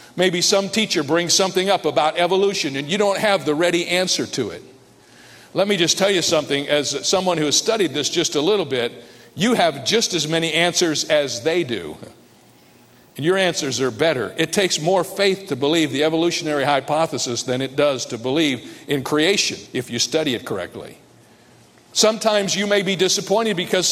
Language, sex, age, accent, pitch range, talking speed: English, male, 50-69, American, 150-195 Hz, 185 wpm